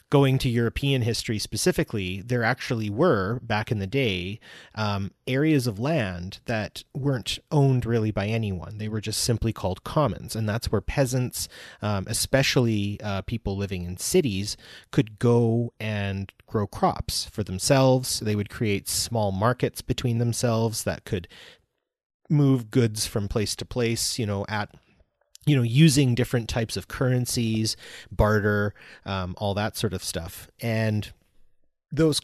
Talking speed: 150 wpm